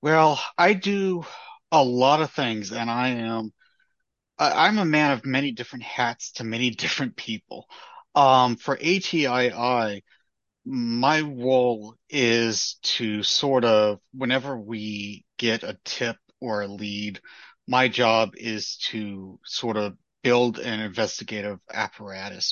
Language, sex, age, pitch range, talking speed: English, male, 30-49, 105-130 Hz, 130 wpm